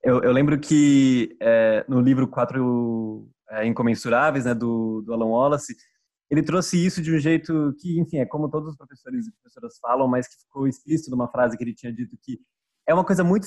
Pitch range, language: 120-155 Hz, Portuguese